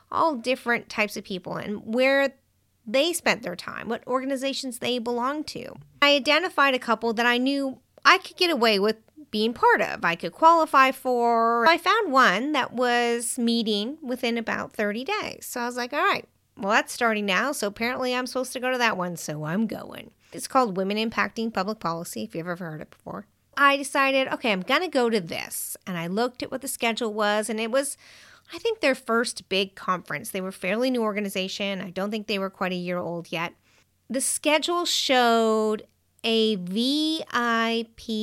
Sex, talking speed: female, 195 wpm